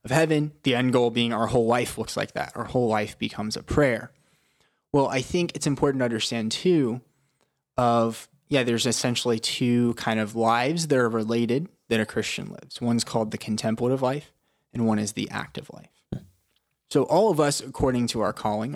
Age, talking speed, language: 20-39, 190 wpm, English